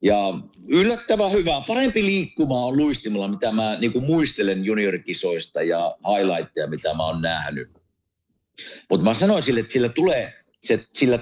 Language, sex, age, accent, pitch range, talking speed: Finnish, male, 50-69, native, 100-155 Hz, 145 wpm